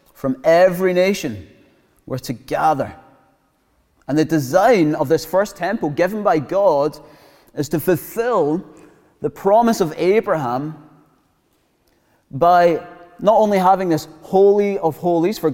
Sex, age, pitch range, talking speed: male, 30-49, 140-180 Hz, 125 wpm